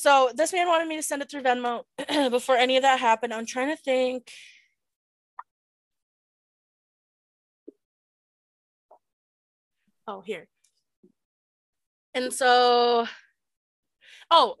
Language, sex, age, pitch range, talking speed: English, female, 20-39, 220-275 Hz, 100 wpm